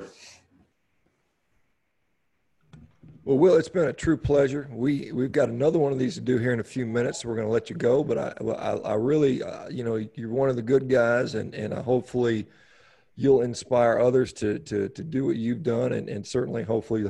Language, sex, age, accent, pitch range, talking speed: English, male, 40-59, American, 100-120 Hz, 210 wpm